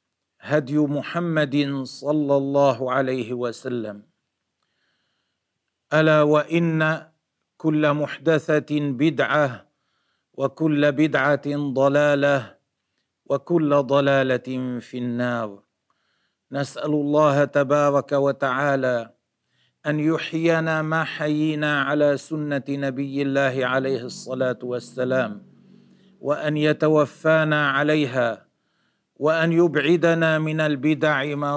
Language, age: Arabic, 50-69